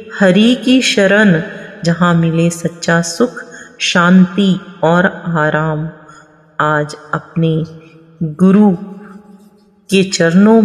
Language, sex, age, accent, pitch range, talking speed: Hindi, female, 30-49, native, 165-210 Hz, 85 wpm